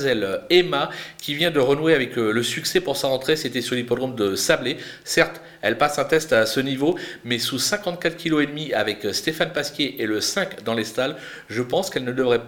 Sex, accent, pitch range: male, French, 125-175 Hz